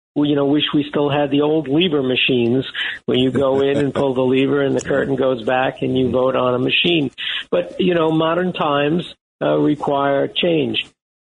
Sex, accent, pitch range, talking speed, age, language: male, American, 145-175 Hz, 205 wpm, 50-69, English